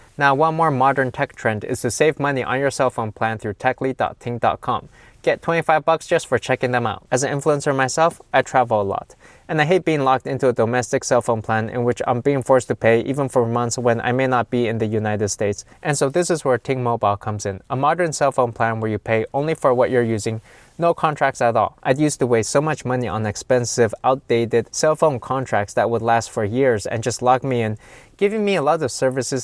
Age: 20-39